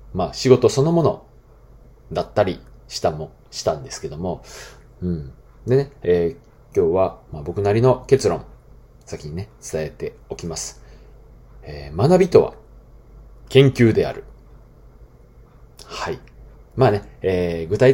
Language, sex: Japanese, male